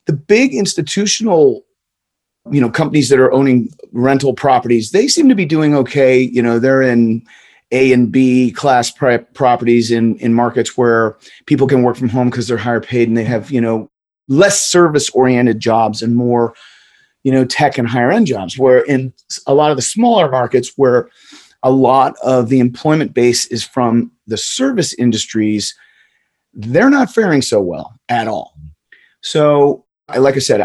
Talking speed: 175 wpm